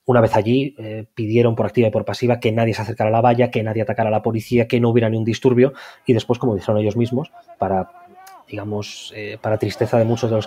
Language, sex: Spanish, male